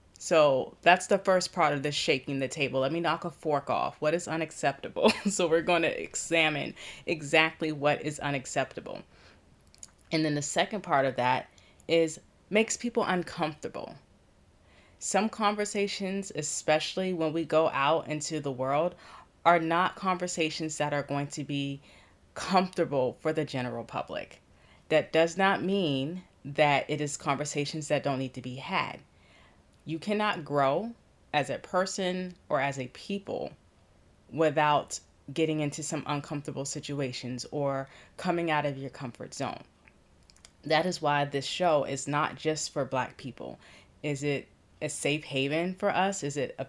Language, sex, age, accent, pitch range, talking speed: English, female, 20-39, American, 135-165 Hz, 155 wpm